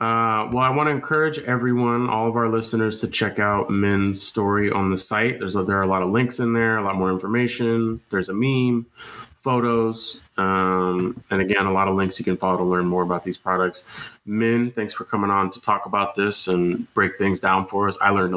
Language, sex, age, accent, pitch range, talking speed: English, male, 20-39, American, 95-115 Hz, 230 wpm